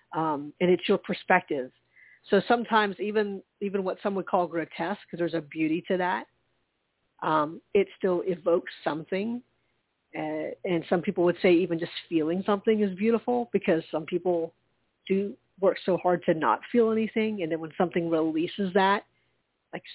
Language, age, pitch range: English, 40-59, 170-200 Hz